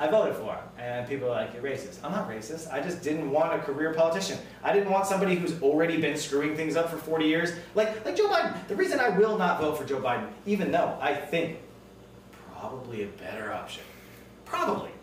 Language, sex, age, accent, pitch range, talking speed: English, male, 30-49, American, 140-175 Hz, 225 wpm